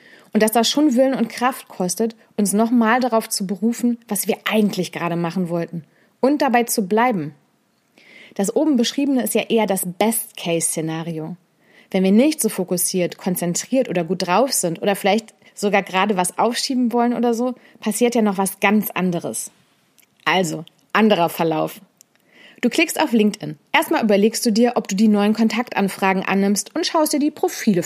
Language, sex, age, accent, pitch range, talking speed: German, female, 30-49, German, 185-245 Hz, 170 wpm